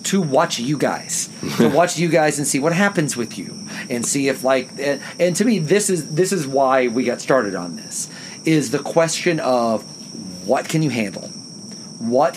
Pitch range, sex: 135-180 Hz, male